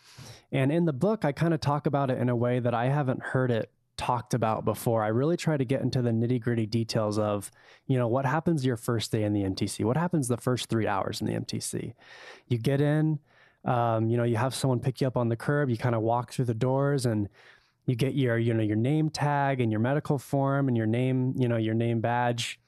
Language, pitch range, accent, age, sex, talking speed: English, 110-130 Hz, American, 20-39, male, 250 wpm